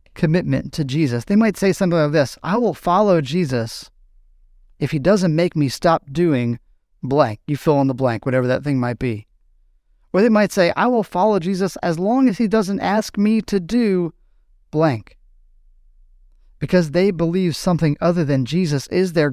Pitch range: 120-175 Hz